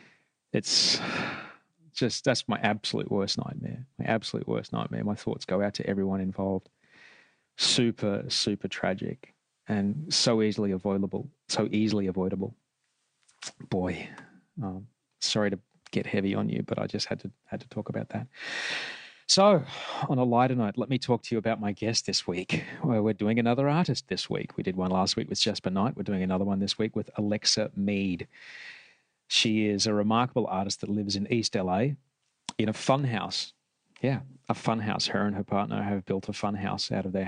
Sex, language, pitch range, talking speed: male, English, 100-120 Hz, 180 wpm